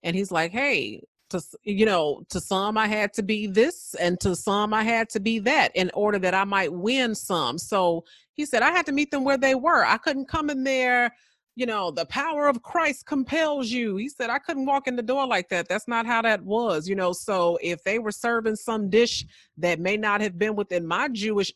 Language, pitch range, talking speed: English, 175-230 Hz, 235 wpm